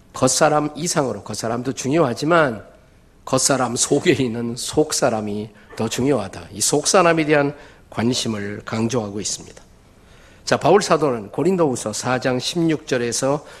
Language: Korean